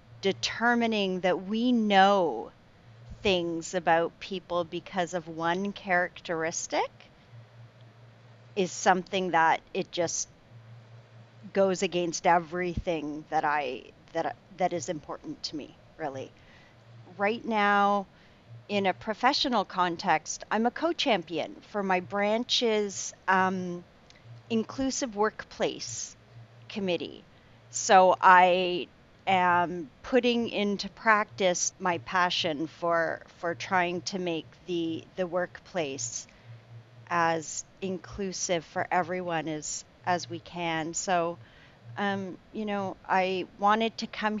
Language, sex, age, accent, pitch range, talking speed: English, female, 40-59, American, 155-195 Hz, 105 wpm